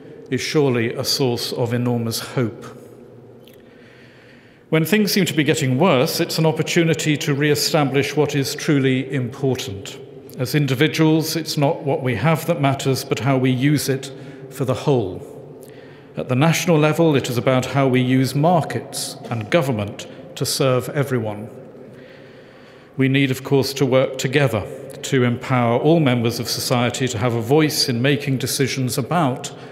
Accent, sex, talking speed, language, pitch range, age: British, male, 155 wpm, English, 125-150 Hz, 50-69